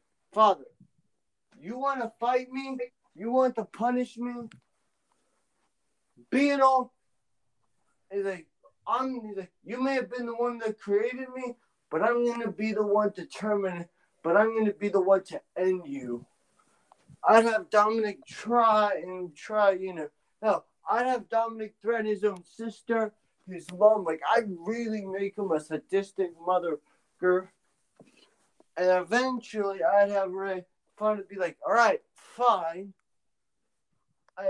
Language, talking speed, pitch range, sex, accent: English, 135 wpm, 180-225 Hz, male, American